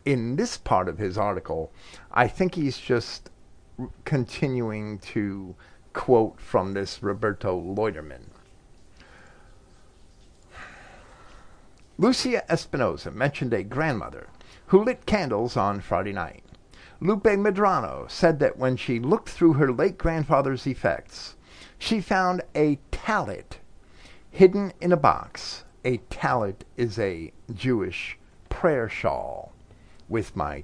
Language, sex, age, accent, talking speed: English, male, 50-69, American, 115 wpm